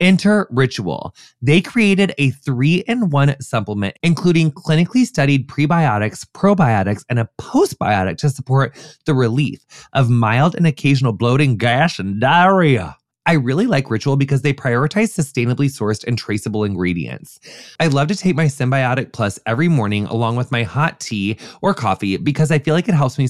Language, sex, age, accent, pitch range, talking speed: English, male, 20-39, American, 120-160 Hz, 160 wpm